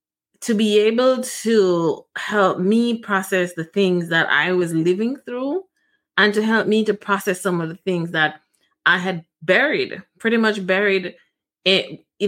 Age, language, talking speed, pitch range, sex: 20-39, English, 155 wpm, 180-215 Hz, female